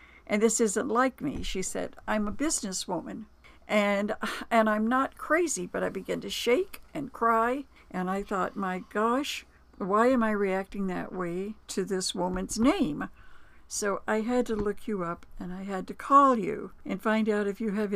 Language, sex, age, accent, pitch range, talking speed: English, female, 60-79, American, 185-235 Hz, 185 wpm